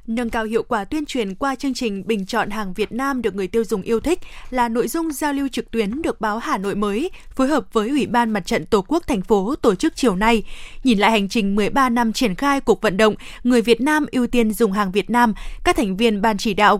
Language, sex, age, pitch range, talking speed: Vietnamese, female, 20-39, 220-270 Hz, 260 wpm